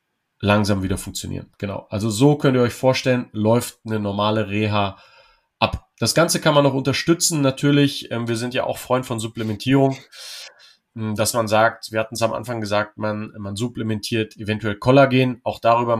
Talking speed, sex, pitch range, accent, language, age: 170 wpm, male, 110-125 Hz, German, German, 30-49